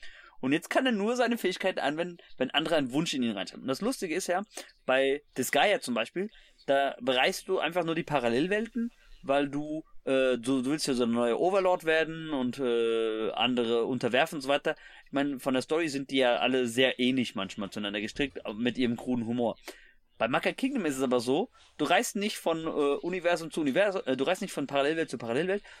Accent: German